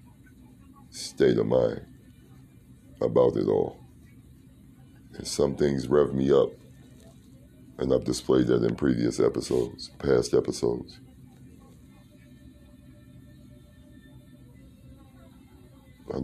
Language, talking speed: English, 80 wpm